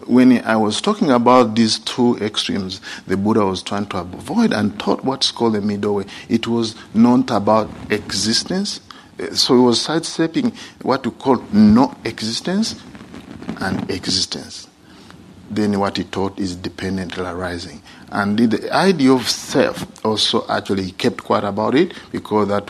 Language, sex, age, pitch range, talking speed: English, male, 50-69, 95-125 Hz, 150 wpm